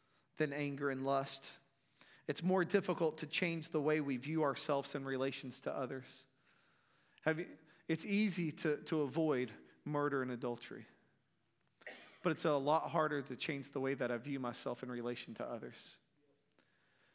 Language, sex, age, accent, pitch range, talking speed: English, male, 40-59, American, 130-155 Hz, 150 wpm